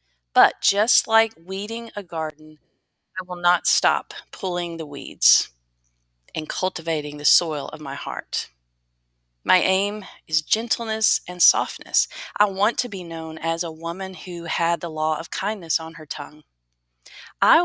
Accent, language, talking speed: American, English, 150 wpm